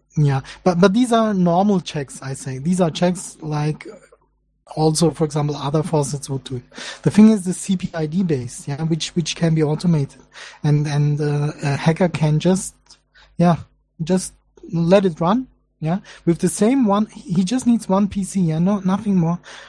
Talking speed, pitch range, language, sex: 180 wpm, 150-190 Hz, English, male